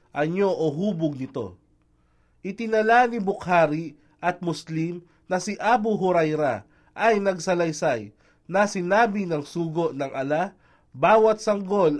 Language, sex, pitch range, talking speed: Filipino, male, 145-185 Hz, 115 wpm